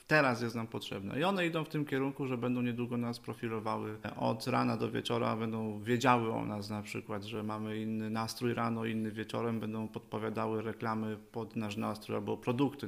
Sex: male